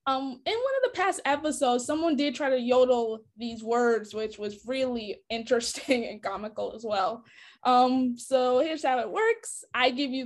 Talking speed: 175 wpm